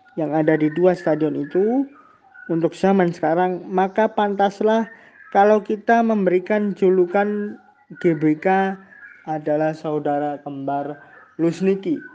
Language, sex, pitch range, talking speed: Indonesian, male, 155-210 Hz, 100 wpm